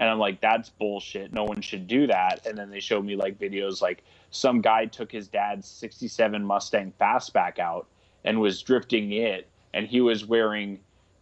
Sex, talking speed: male, 185 wpm